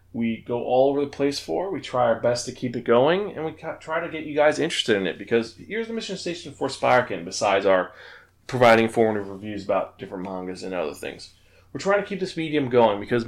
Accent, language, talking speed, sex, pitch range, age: American, English, 230 wpm, male, 100-140 Hz, 20-39